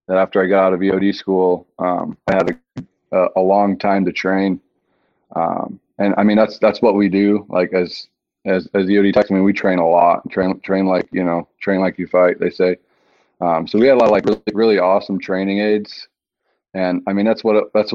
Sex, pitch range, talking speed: male, 90-105 Hz, 230 wpm